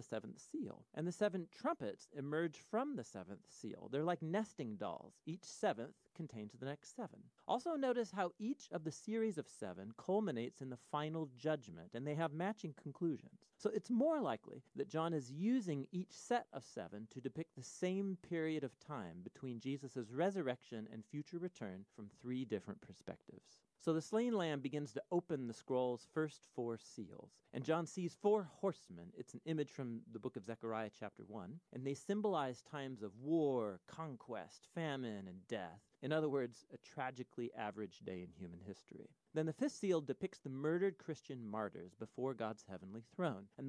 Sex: male